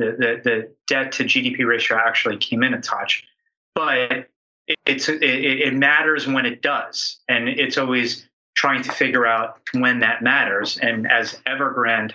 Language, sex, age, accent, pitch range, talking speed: English, male, 30-49, American, 115-130 Hz, 170 wpm